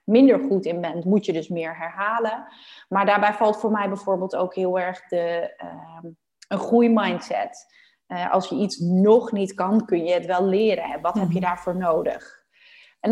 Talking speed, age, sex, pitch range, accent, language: 180 wpm, 30-49, female, 180-230 Hz, Dutch, Dutch